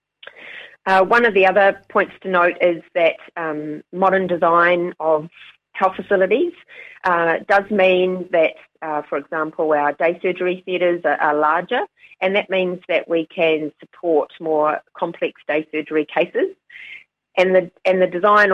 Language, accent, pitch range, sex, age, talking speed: English, Australian, 150-185 Hz, female, 30-49, 150 wpm